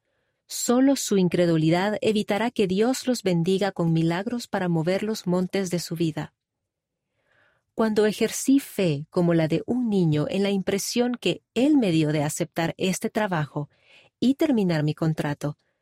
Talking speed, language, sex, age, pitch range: 150 wpm, Spanish, female, 40-59, 165-220 Hz